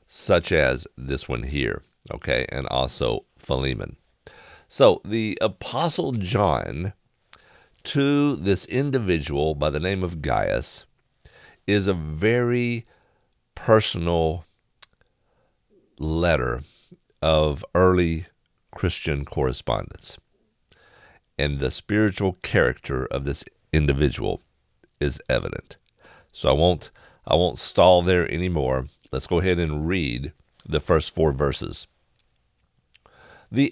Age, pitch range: 50-69, 80-115 Hz